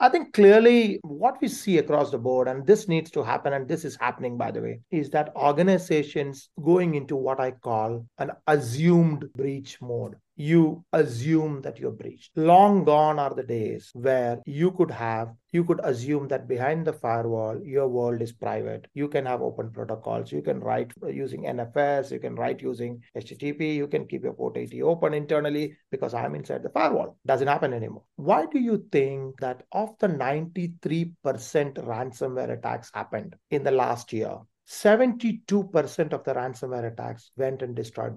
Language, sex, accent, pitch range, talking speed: English, male, Indian, 130-185 Hz, 175 wpm